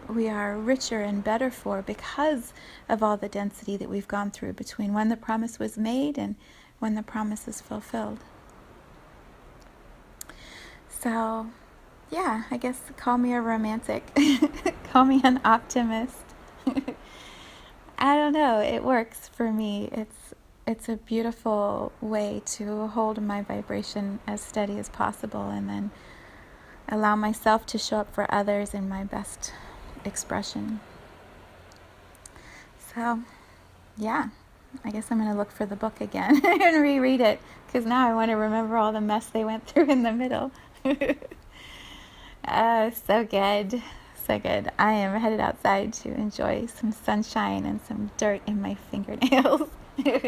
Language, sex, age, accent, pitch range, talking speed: English, female, 30-49, American, 205-245 Hz, 145 wpm